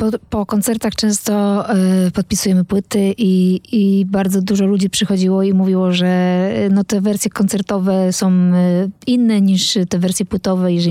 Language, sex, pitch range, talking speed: Polish, female, 195-220 Hz, 160 wpm